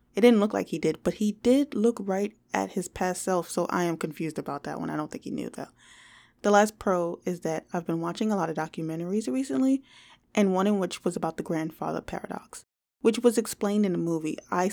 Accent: American